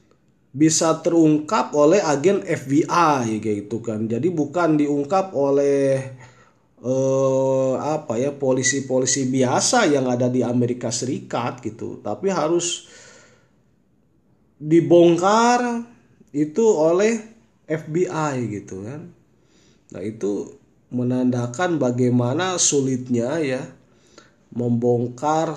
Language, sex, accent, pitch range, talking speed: Indonesian, male, native, 120-155 Hz, 85 wpm